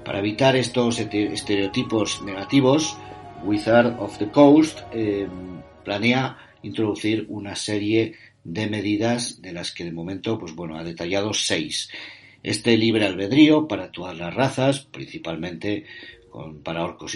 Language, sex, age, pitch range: Spanish, male, 50-69, 95-120 Hz